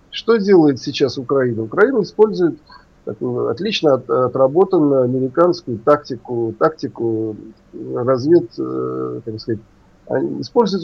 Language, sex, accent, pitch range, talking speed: Russian, male, native, 130-175 Hz, 85 wpm